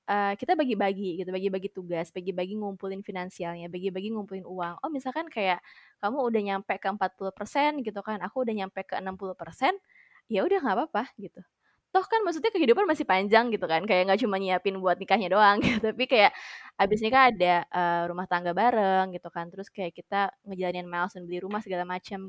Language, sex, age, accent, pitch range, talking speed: English, female, 20-39, Indonesian, 185-225 Hz, 185 wpm